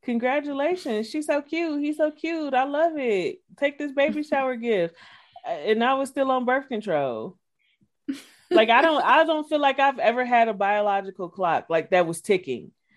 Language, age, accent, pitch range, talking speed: English, 20-39, American, 175-240 Hz, 180 wpm